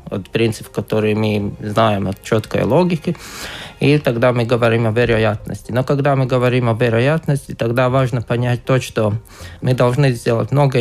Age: 20-39